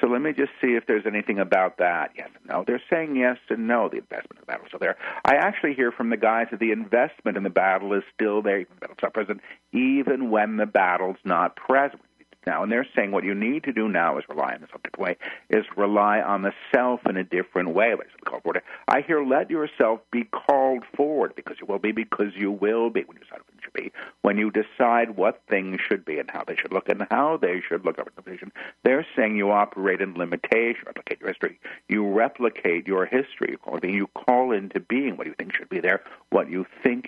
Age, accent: 60-79, American